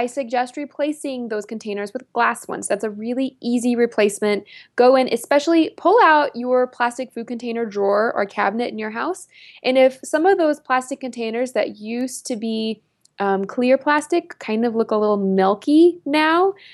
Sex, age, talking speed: female, 20-39, 175 wpm